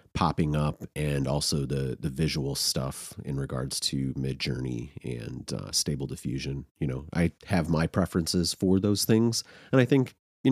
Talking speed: 170 wpm